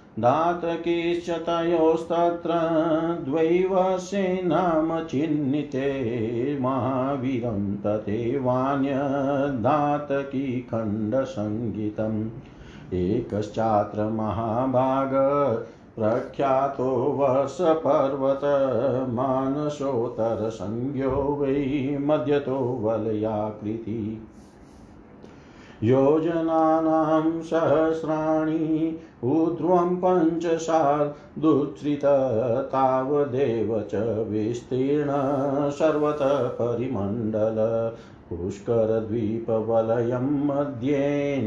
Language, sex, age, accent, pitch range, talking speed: Hindi, male, 50-69, native, 115-155 Hz, 30 wpm